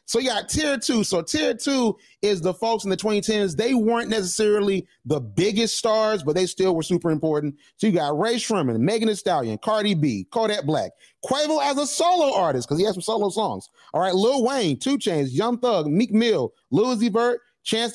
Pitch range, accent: 175-230 Hz, American